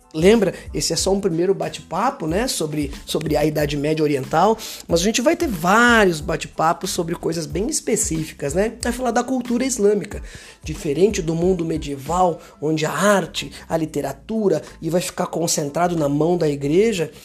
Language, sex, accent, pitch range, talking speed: Portuguese, male, Brazilian, 160-215 Hz, 165 wpm